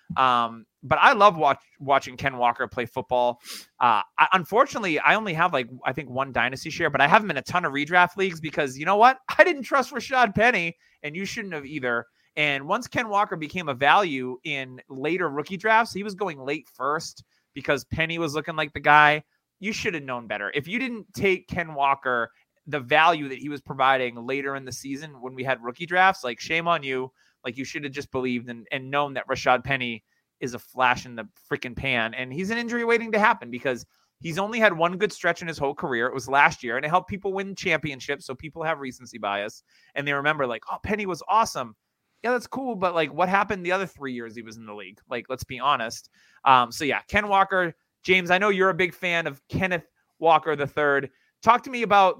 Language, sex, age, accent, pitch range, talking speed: English, male, 30-49, American, 130-190 Hz, 230 wpm